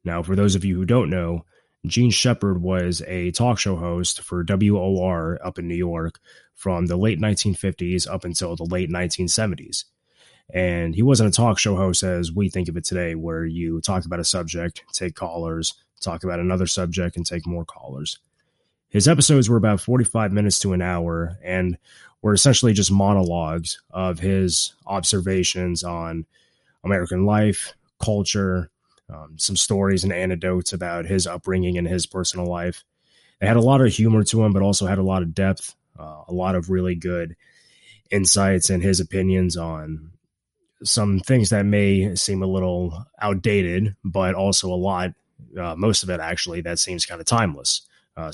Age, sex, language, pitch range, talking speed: 20-39, male, English, 85-100 Hz, 175 wpm